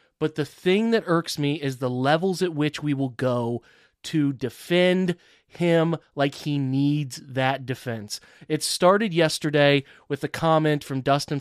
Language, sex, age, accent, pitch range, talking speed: English, male, 30-49, American, 135-170 Hz, 160 wpm